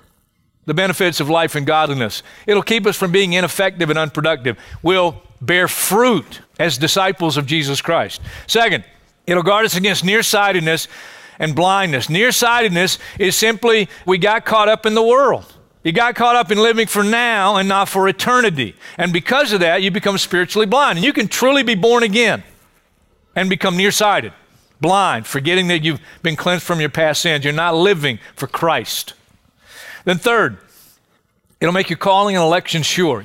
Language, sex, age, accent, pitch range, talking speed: English, male, 50-69, American, 155-205 Hz, 170 wpm